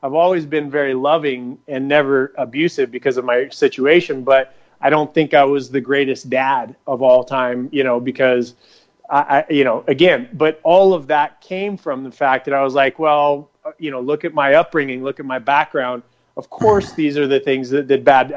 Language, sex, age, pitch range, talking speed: English, male, 30-49, 130-155 Hz, 210 wpm